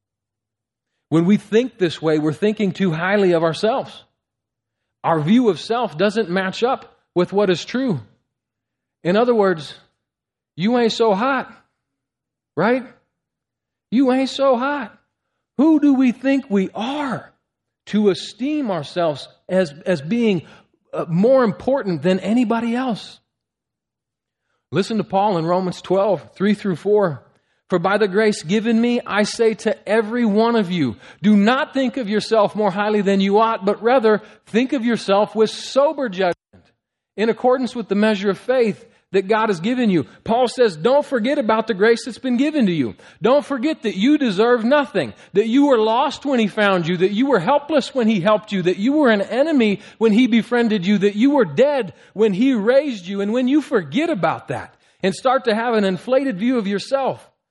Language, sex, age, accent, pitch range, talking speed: English, male, 40-59, American, 185-245 Hz, 175 wpm